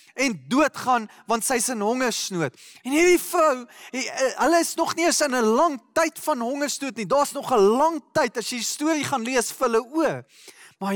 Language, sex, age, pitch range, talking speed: English, male, 20-39, 215-285 Hz, 195 wpm